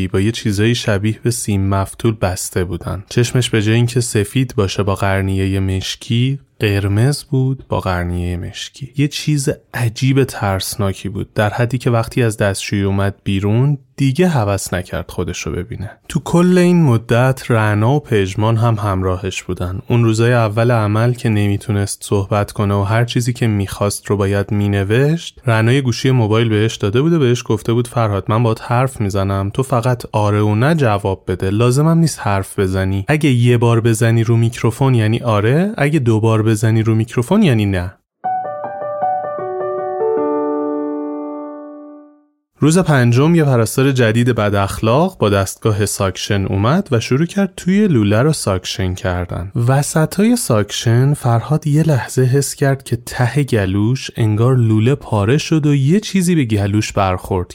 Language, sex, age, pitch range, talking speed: Persian, male, 20-39, 100-140 Hz, 155 wpm